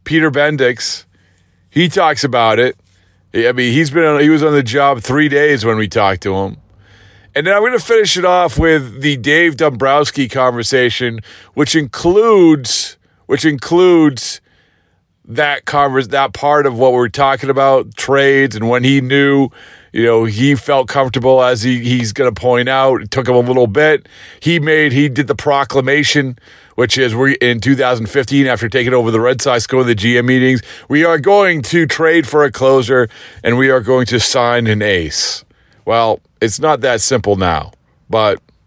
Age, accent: 40-59, American